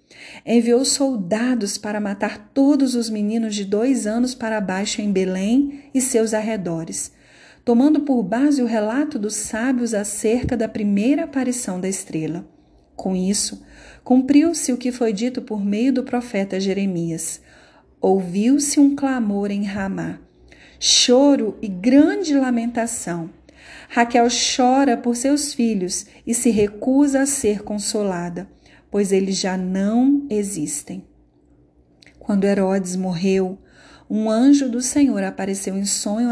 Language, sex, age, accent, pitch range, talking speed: Portuguese, female, 40-59, Brazilian, 195-250 Hz, 125 wpm